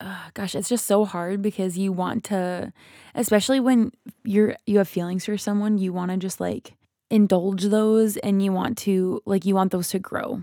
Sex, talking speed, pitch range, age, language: female, 200 wpm, 180-200 Hz, 20-39, English